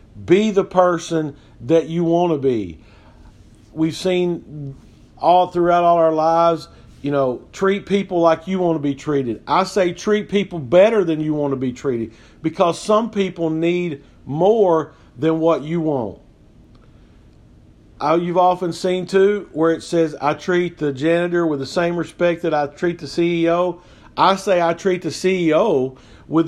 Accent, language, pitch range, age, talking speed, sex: American, English, 140-175 Hz, 50-69, 165 wpm, male